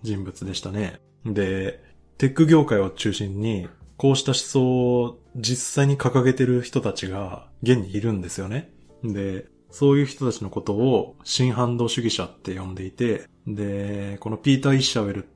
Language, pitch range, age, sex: Japanese, 95-130 Hz, 20-39, male